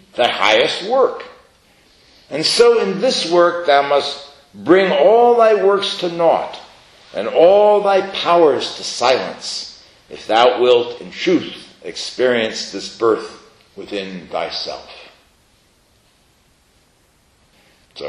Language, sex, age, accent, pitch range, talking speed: English, male, 60-79, American, 140-225 Hz, 110 wpm